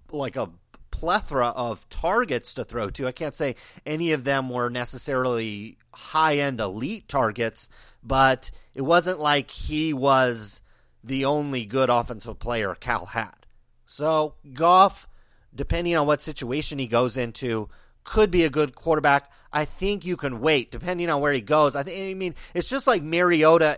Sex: male